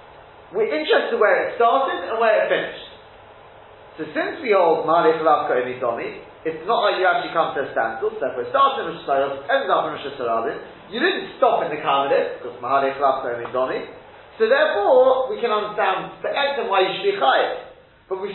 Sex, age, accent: male, 40-59, British